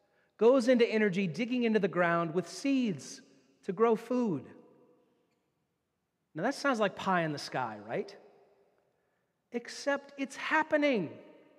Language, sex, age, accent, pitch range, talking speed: English, male, 40-59, American, 165-230 Hz, 125 wpm